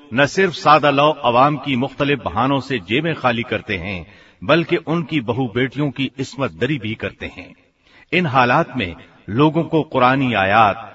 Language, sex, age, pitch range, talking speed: Hindi, male, 50-69, 110-145 Hz, 165 wpm